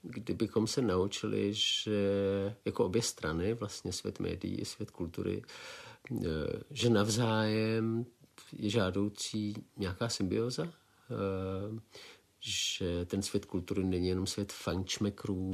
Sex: male